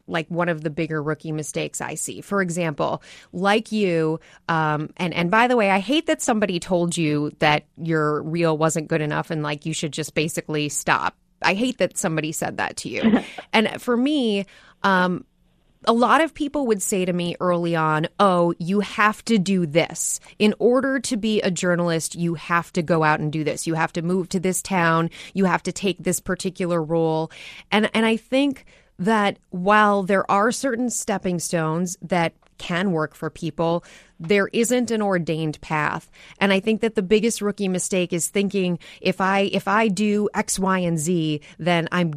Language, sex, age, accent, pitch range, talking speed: English, female, 30-49, American, 165-210 Hz, 195 wpm